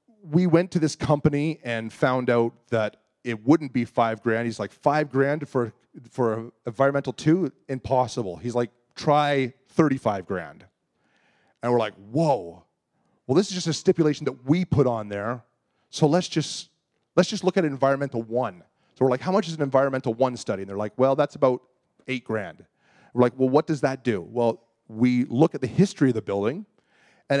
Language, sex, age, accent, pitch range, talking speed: English, male, 30-49, American, 115-150 Hz, 195 wpm